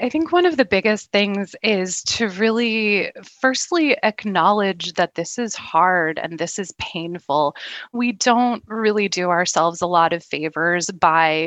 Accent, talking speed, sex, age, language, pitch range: American, 155 wpm, female, 20-39, English, 165-215 Hz